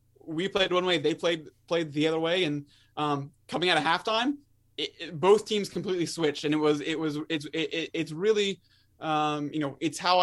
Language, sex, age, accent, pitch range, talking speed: English, male, 20-39, American, 150-165 Hz, 215 wpm